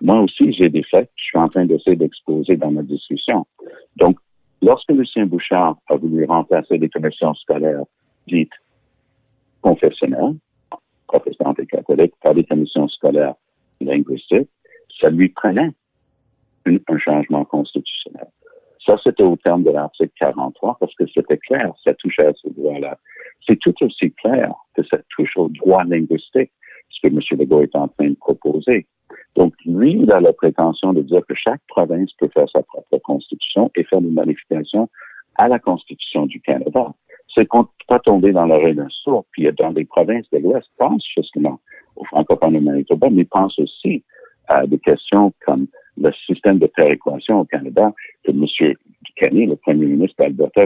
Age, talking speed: 60-79, 175 wpm